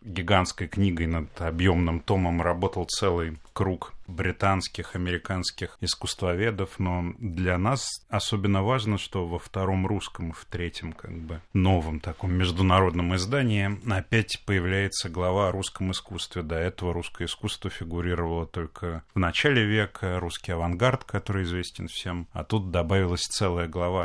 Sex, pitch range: male, 85-95 Hz